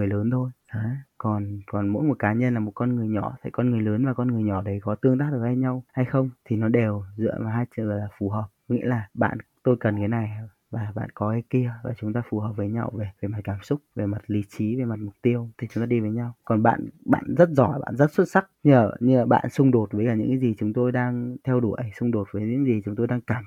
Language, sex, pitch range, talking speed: Vietnamese, male, 105-125 Hz, 290 wpm